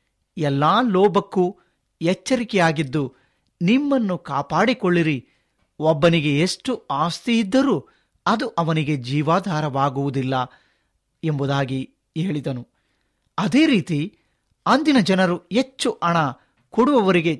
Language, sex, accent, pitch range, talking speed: Kannada, male, native, 145-215 Hz, 70 wpm